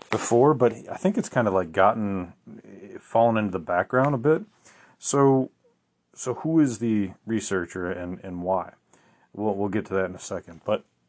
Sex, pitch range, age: male, 95-120 Hz, 30-49